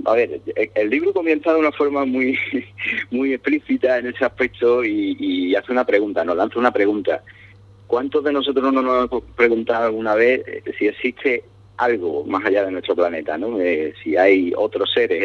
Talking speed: 180 wpm